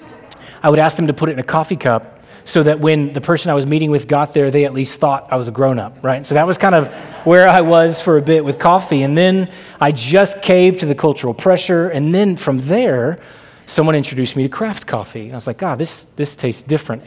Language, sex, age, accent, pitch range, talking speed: English, male, 30-49, American, 130-160 Hz, 250 wpm